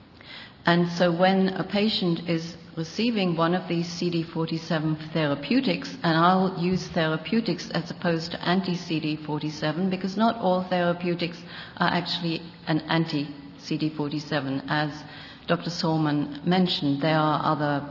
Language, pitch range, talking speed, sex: English, 150-180 Hz, 115 wpm, female